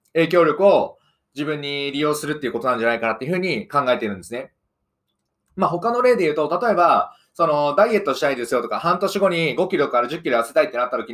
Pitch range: 135-210 Hz